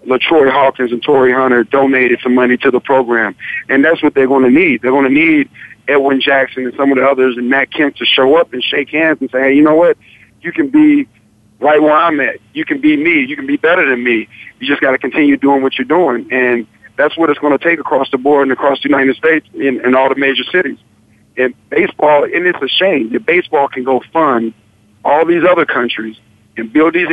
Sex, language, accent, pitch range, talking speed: male, English, American, 125-150 Hz, 245 wpm